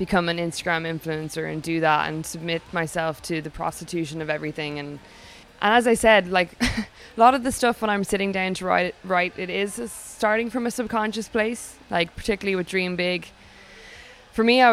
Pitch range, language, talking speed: 155-185 Hz, English, 200 wpm